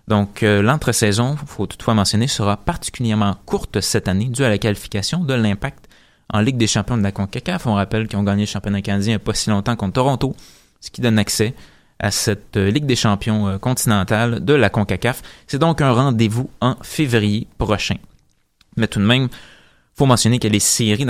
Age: 20-39